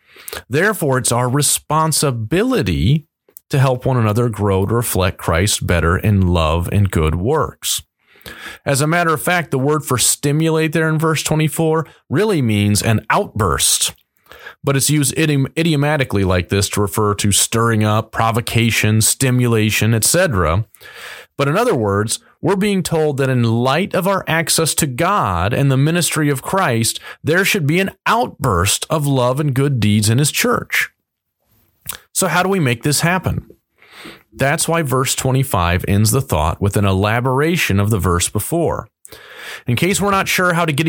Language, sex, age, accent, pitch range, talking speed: English, male, 40-59, American, 110-160 Hz, 165 wpm